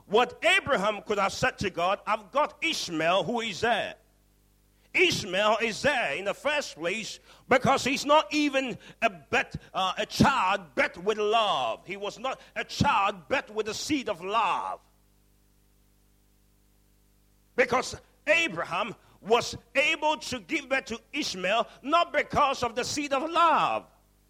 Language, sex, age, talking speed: English, male, 50-69, 140 wpm